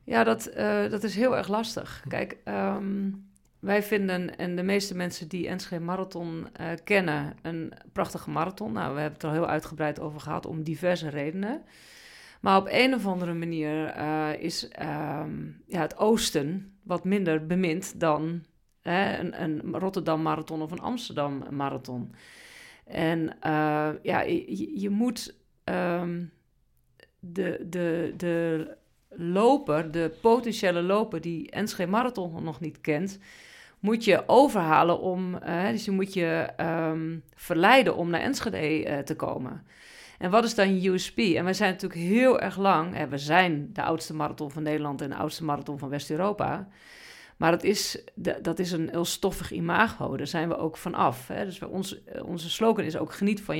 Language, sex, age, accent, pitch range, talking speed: Dutch, female, 40-59, Dutch, 155-195 Hz, 165 wpm